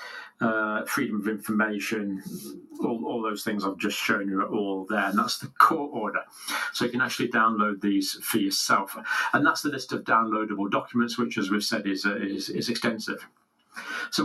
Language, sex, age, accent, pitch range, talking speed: English, male, 50-69, British, 105-120 Hz, 185 wpm